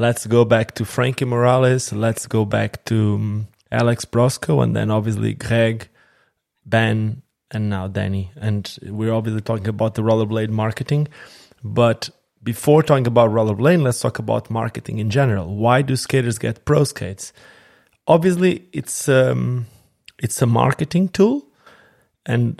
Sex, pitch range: male, 110-130 Hz